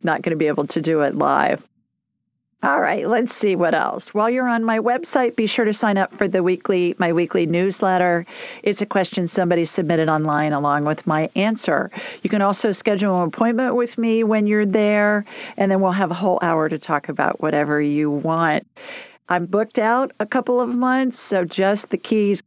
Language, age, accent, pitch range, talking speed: English, 50-69, American, 165-220 Hz, 205 wpm